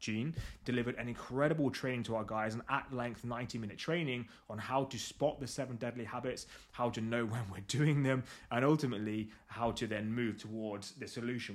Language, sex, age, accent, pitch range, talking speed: English, male, 20-39, British, 110-135 Hz, 200 wpm